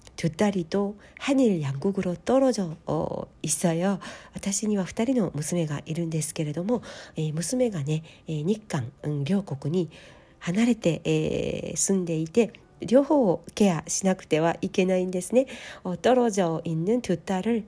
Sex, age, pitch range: female, 40-59, 155-210 Hz